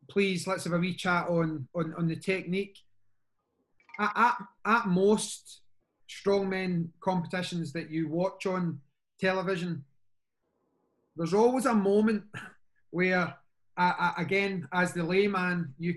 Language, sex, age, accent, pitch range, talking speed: English, male, 30-49, British, 160-200 Hz, 125 wpm